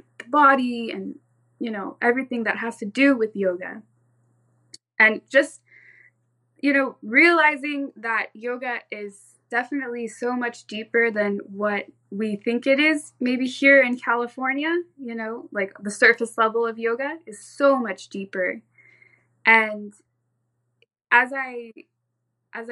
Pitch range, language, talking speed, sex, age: 200-235 Hz, English, 130 wpm, female, 20-39